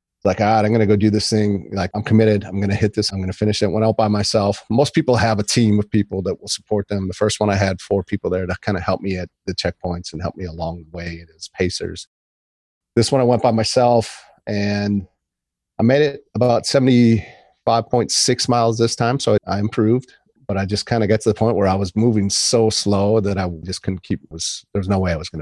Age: 40-59